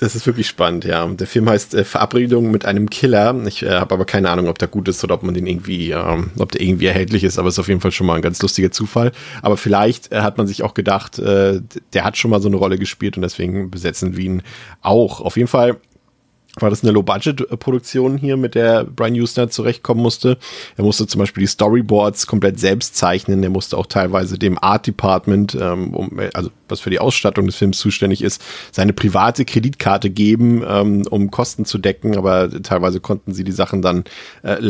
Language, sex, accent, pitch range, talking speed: German, male, German, 95-110 Hz, 220 wpm